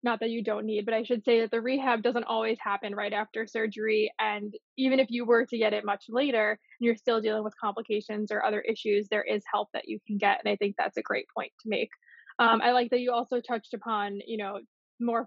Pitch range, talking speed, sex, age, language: 215-240 Hz, 250 wpm, female, 20-39, English